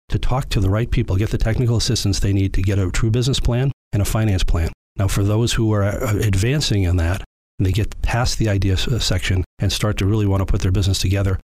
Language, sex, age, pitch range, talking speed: English, male, 40-59, 95-115 Hz, 245 wpm